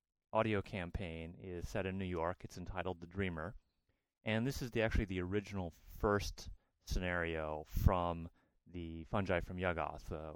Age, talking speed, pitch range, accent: 30-49, 150 wpm, 85-105 Hz, American